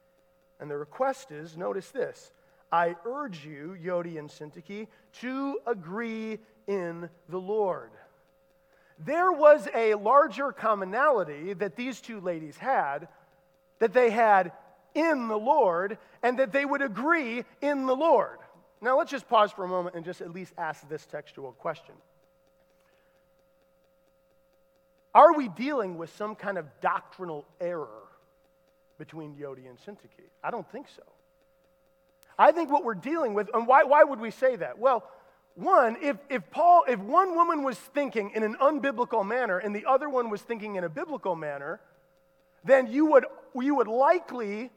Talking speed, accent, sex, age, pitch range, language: 155 wpm, American, male, 40-59, 180-265 Hz, English